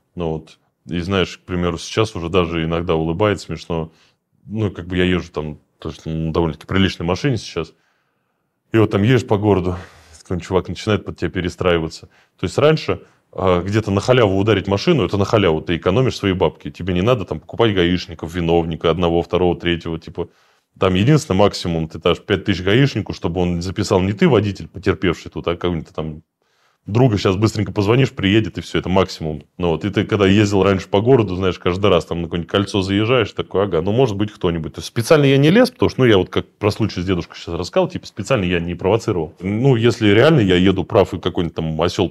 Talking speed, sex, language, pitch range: 210 wpm, male, Russian, 85-105 Hz